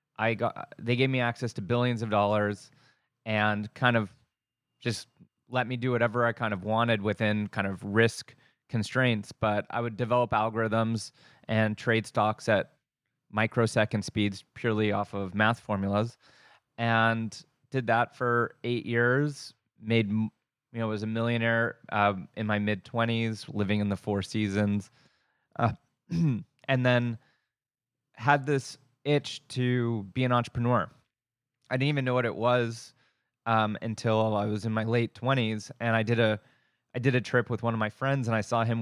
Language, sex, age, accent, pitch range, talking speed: English, male, 20-39, American, 110-125 Hz, 165 wpm